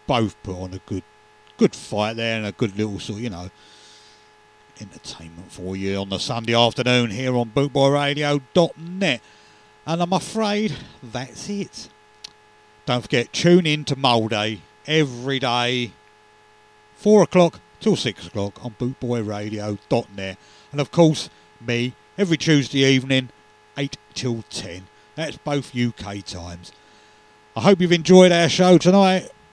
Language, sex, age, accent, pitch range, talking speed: English, male, 50-69, British, 105-140 Hz, 135 wpm